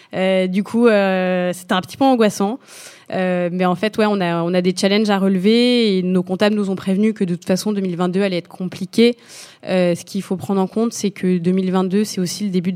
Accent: French